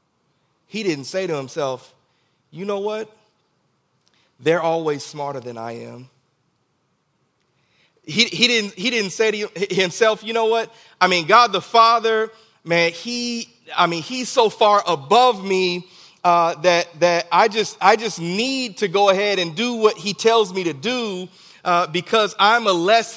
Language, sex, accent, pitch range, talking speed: English, male, American, 160-225 Hz, 165 wpm